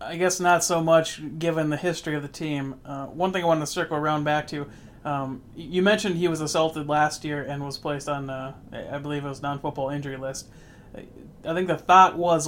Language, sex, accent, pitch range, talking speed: English, male, American, 140-170 Hz, 220 wpm